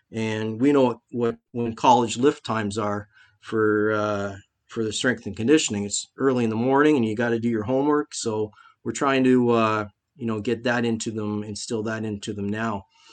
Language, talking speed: English, 205 wpm